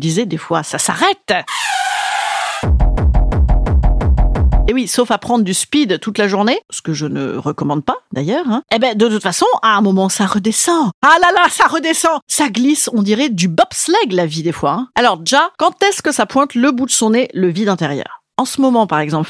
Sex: female